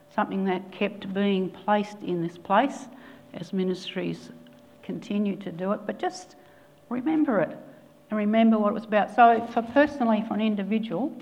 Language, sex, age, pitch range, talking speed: English, female, 60-79, 190-235 Hz, 160 wpm